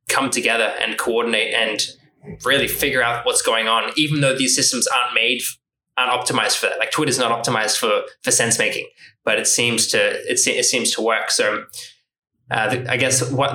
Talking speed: 200 wpm